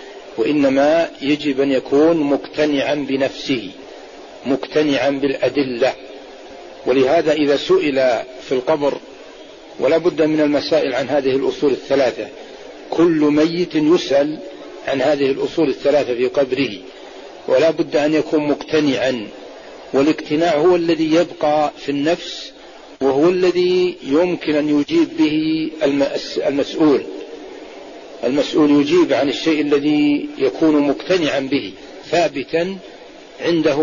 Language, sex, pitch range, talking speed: Arabic, male, 145-170 Hz, 105 wpm